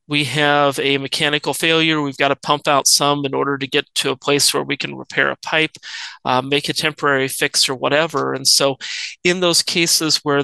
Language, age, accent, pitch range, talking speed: English, 30-49, American, 140-155 Hz, 215 wpm